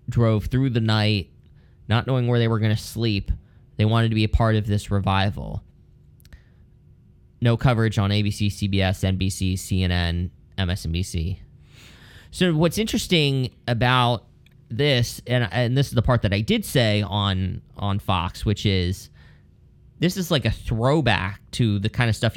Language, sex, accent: English, male, American